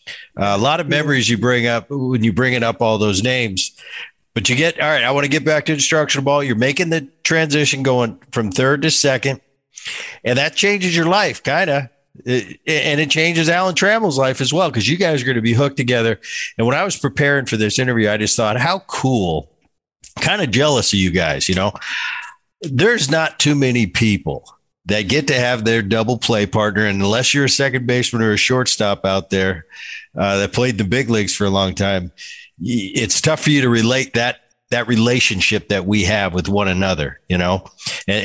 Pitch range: 105-135 Hz